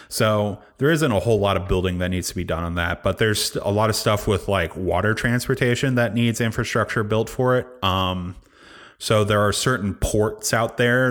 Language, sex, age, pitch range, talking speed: English, male, 30-49, 90-105 Hz, 210 wpm